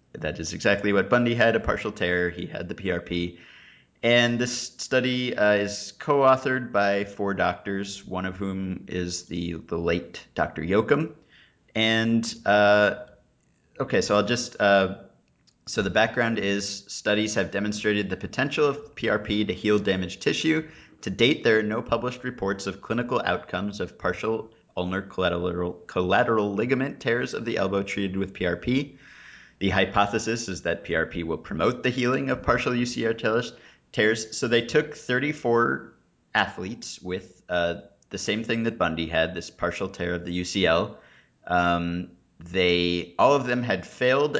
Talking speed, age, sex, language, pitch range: 155 wpm, 30-49, male, English, 90-115 Hz